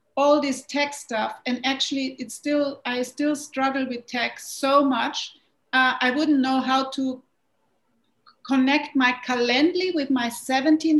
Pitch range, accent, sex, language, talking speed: 255-295 Hz, German, female, English, 145 wpm